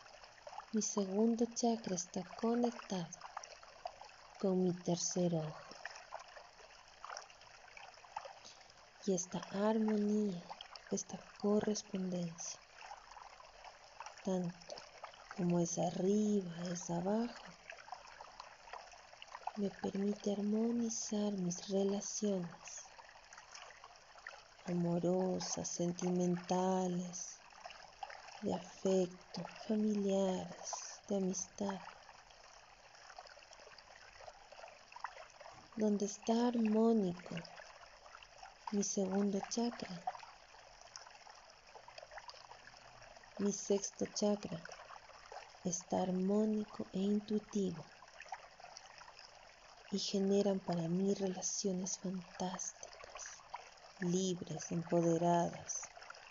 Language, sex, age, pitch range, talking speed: Spanish, female, 30-49, 180-210 Hz, 55 wpm